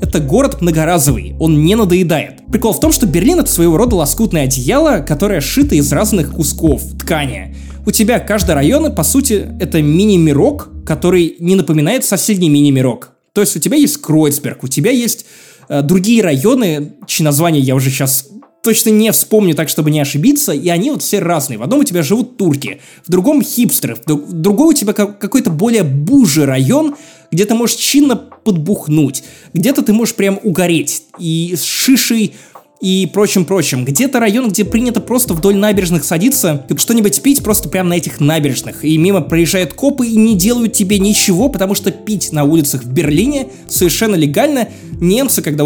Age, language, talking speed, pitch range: 20-39, Russian, 175 wpm, 155-225 Hz